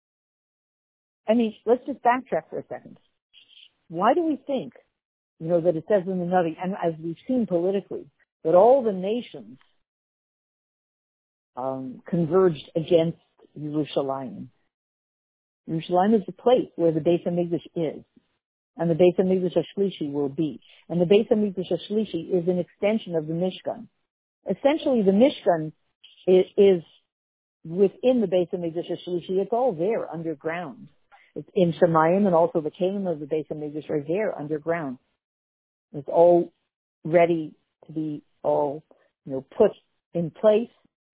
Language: English